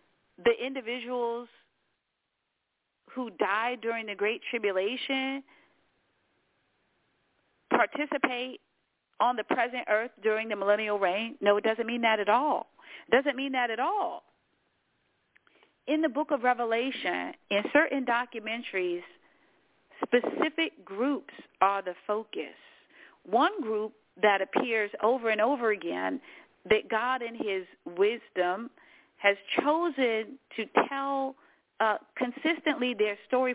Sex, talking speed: female, 115 wpm